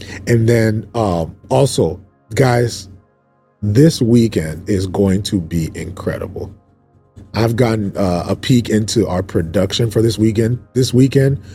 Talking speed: 130 wpm